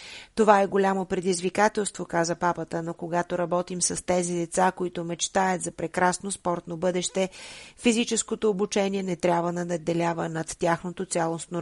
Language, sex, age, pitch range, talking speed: Bulgarian, female, 30-49, 165-190 Hz, 140 wpm